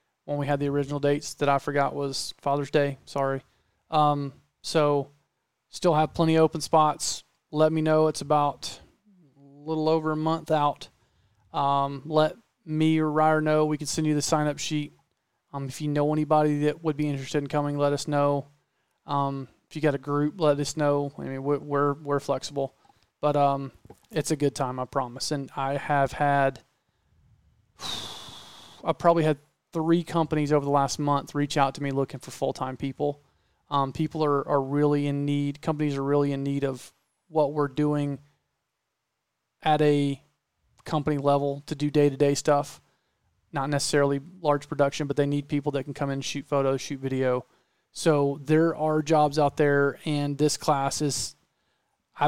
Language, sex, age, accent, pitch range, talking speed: English, male, 30-49, American, 140-155 Hz, 180 wpm